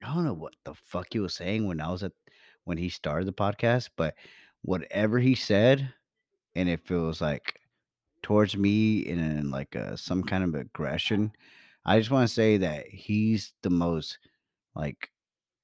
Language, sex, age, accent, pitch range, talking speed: English, male, 30-49, American, 85-110 Hz, 175 wpm